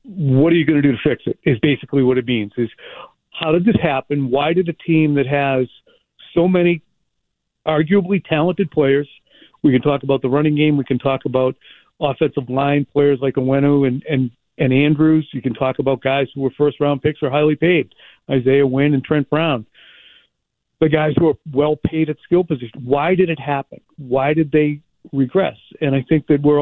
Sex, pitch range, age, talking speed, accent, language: male, 135-155 Hz, 50-69, 200 wpm, American, English